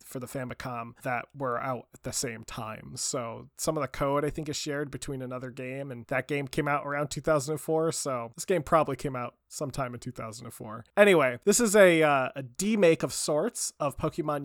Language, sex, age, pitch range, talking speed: English, male, 20-39, 125-165 Hz, 205 wpm